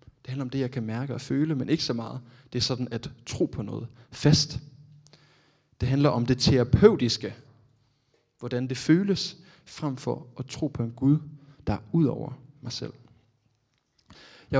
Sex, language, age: male, Danish, 20-39